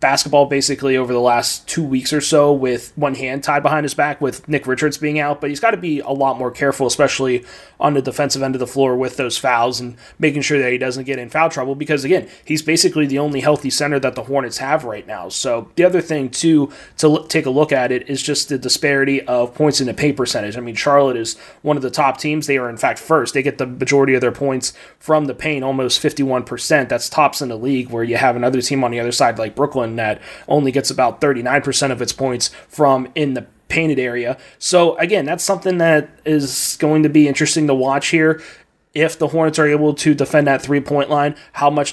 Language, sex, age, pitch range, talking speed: English, male, 30-49, 130-150 Hz, 240 wpm